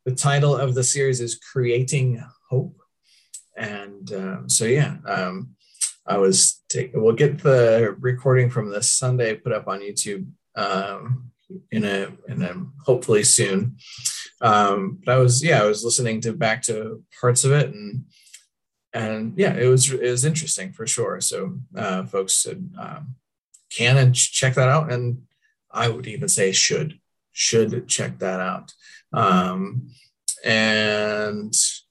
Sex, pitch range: male, 110-140 Hz